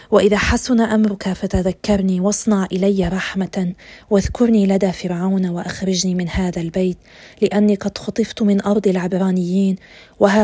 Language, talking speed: Arabic, 120 wpm